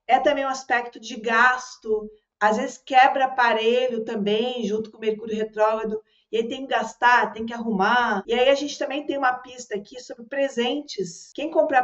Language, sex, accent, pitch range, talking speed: Portuguese, female, Brazilian, 220-285 Hz, 190 wpm